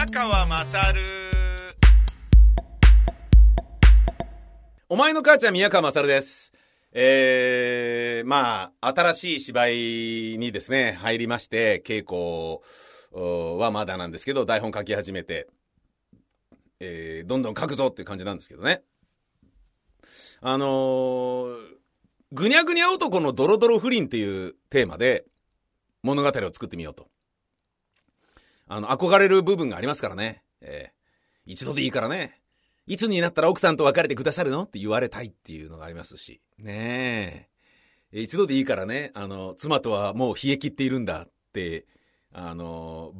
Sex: male